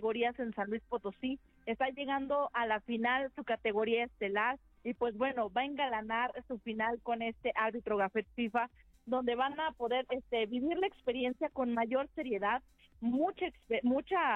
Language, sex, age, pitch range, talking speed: Spanish, female, 40-59, 220-260 Hz, 165 wpm